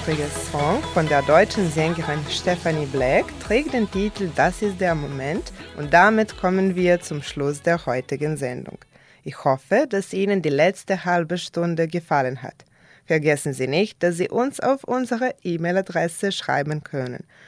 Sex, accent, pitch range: female, German, 155-210 Hz